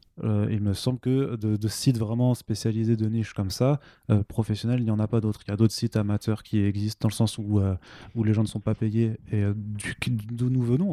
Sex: male